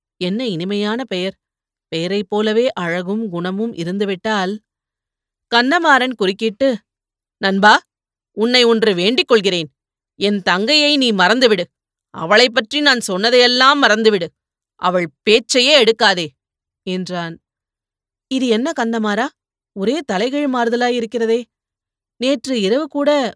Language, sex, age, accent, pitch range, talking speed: Tamil, female, 30-49, native, 185-240 Hz, 90 wpm